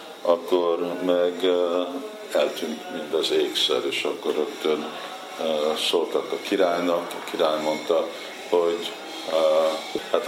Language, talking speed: Hungarian, 115 wpm